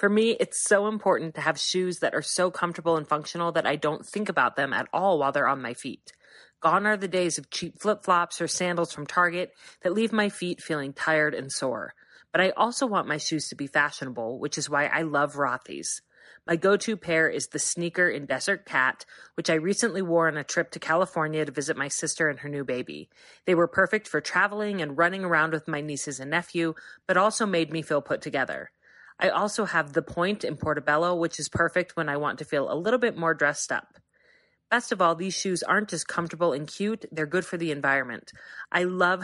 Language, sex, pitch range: English, female, 150-185 Hz